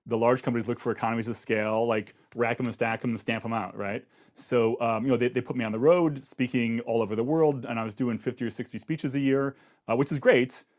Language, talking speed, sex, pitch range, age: English, 275 wpm, male, 115-135 Hz, 30-49